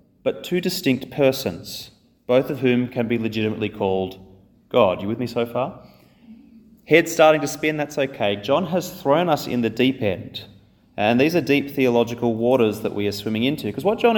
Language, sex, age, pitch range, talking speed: English, male, 30-49, 115-160 Hz, 190 wpm